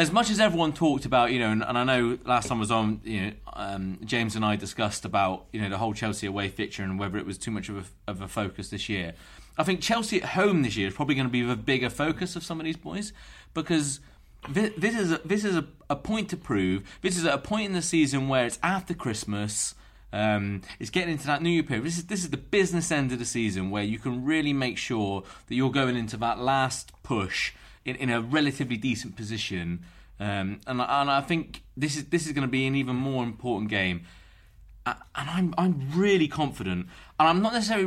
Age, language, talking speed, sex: 30-49, English, 240 wpm, male